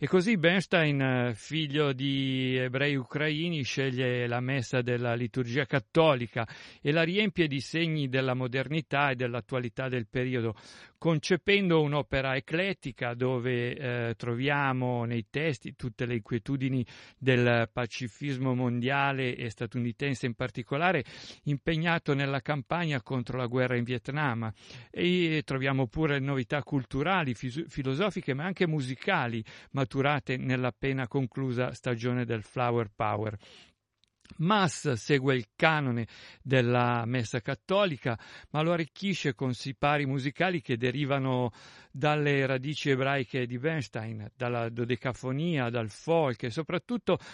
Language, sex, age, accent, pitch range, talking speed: Italian, male, 50-69, native, 125-150 Hz, 115 wpm